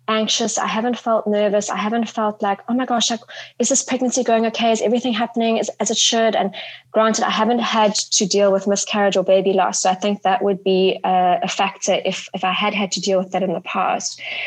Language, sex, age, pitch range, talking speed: English, female, 20-39, 195-230 Hz, 235 wpm